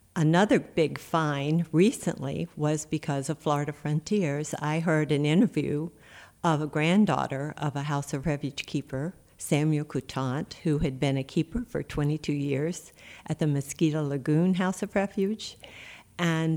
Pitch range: 145-170 Hz